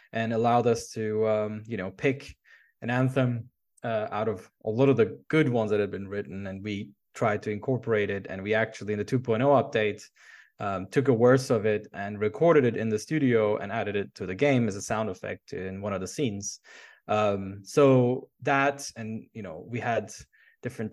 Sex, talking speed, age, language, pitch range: male, 205 wpm, 20-39, English, 100-125 Hz